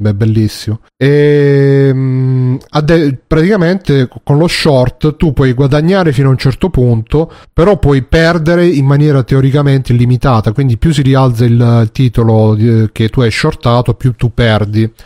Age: 30-49